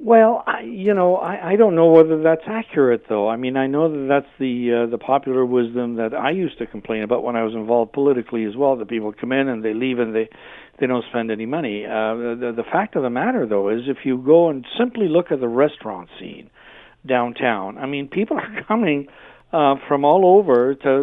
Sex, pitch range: male, 125-165 Hz